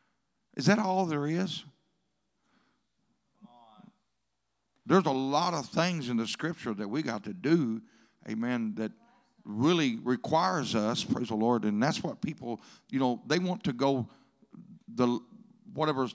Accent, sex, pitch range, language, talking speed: American, male, 130-200 Hz, English, 140 wpm